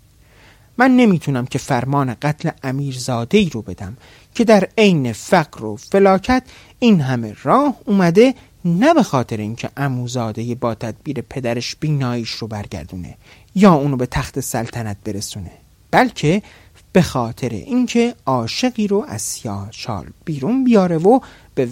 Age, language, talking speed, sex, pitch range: 30-49, Persian, 135 wpm, male, 110-180 Hz